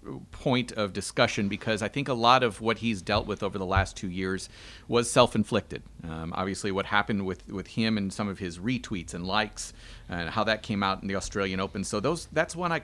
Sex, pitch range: male, 100-130 Hz